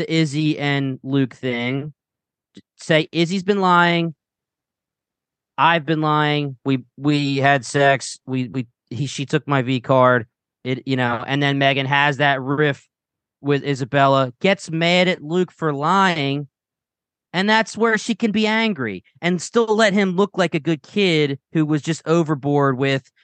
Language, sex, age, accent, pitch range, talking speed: English, male, 20-39, American, 135-170 Hz, 160 wpm